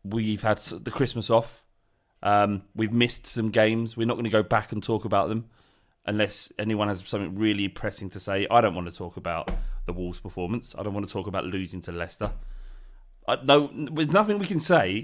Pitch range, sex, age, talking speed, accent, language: 105-150 Hz, male, 30-49, 205 wpm, British, English